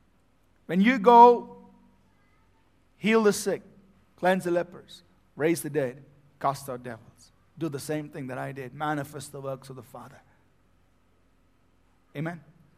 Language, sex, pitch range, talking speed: English, male, 135-230 Hz, 135 wpm